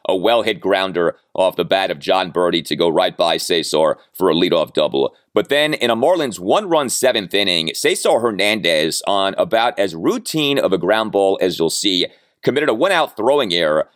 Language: English